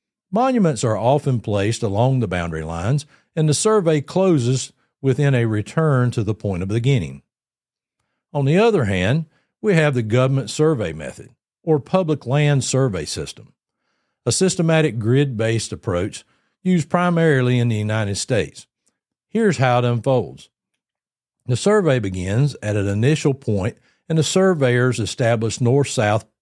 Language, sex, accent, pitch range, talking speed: English, male, American, 110-150 Hz, 140 wpm